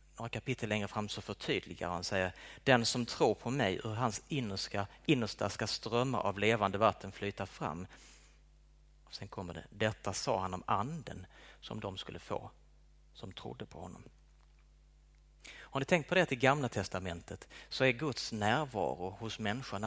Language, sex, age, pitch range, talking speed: Swedish, male, 30-49, 90-120 Hz, 165 wpm